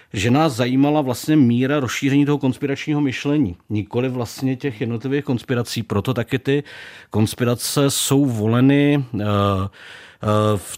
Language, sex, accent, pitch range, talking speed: Czech, male, native, 115-135 Hz, 130 wpm